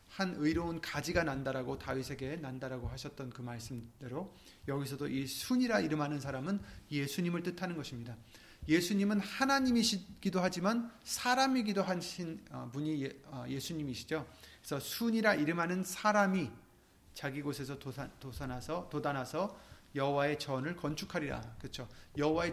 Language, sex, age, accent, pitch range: Korean, male, 30-49, native, 130-175 Hz